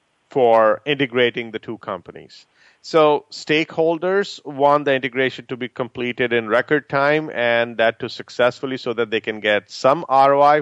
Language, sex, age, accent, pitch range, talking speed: English, male, 40-59, Indian, 120-145 Hz, 155 wpm